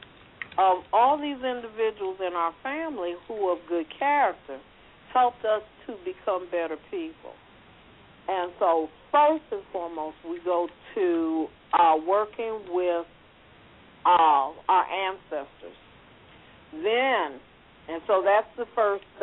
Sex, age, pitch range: female, 50-69, 165-225 Hz